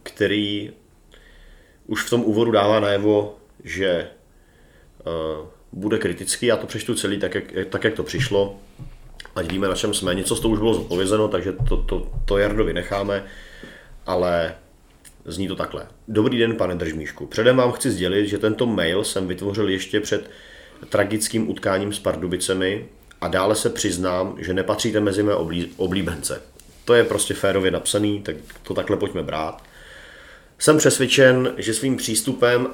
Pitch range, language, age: 95-105 Hz, Czech, 40-59